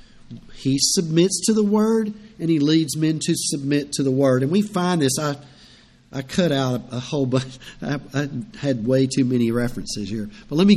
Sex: male